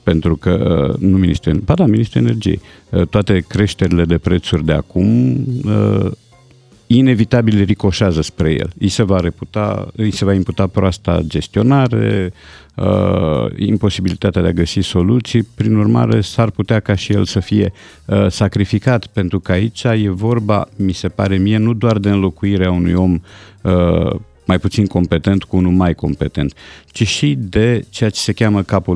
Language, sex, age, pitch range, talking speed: Romanian, male, 50-69, 85-105 Hz, 145 wpm